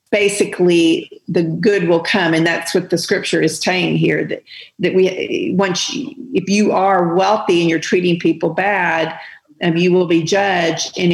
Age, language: 50-69, English